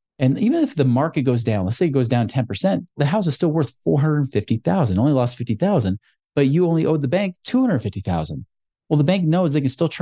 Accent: American